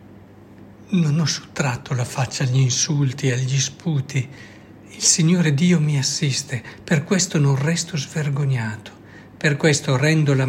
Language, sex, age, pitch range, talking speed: Italian, male, 60-79, 110-155 Hz, 130 wpm